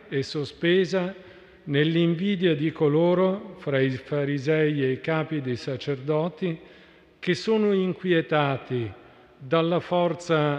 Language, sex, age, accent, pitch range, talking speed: Italian, male, 50-69, native, 145-180 Hz, 100 wpm